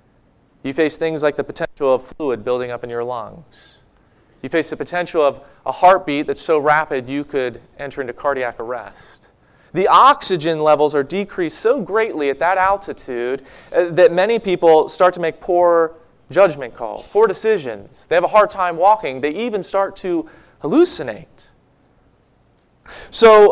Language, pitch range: English, 140-215 Hz